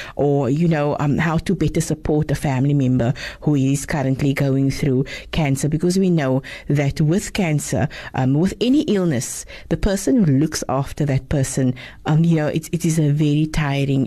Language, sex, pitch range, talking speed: English, female, 145-185 Hz, 185 wpm